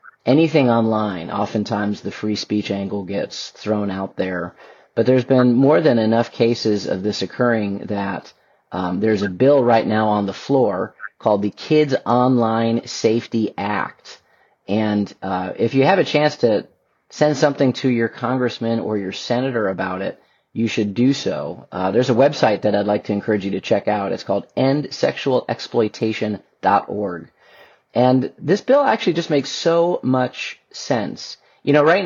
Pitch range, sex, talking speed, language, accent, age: 105-140 Hz, male, 165 wpm, English, American, 40-59